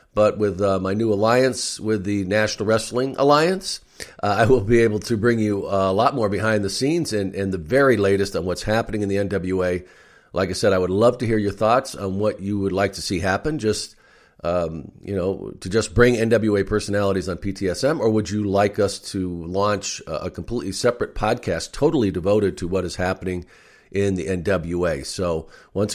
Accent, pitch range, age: American, 95-115 Hz, 50-69